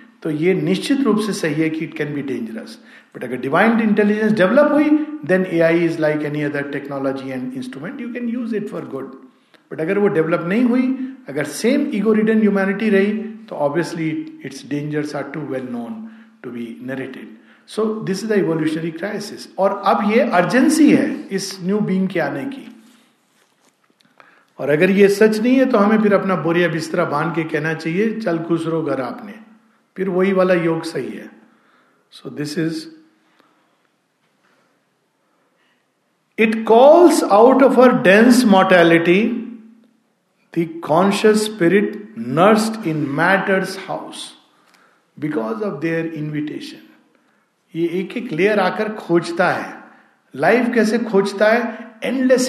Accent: native